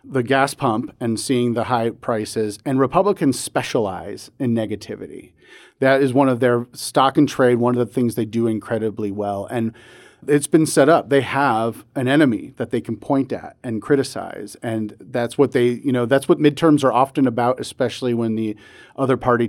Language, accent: English, American